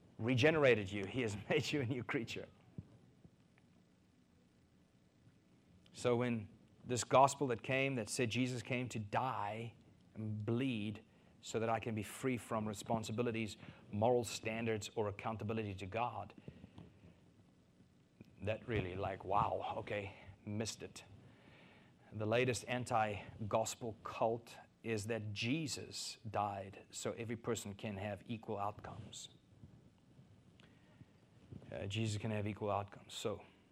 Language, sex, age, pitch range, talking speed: English, male, 30-49, 105-125 Hz, 115 wpm